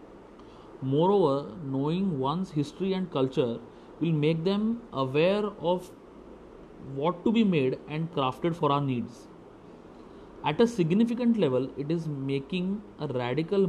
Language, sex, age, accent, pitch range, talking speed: English, male, 30-49, Indian, 135-195 Hz, 125 wpm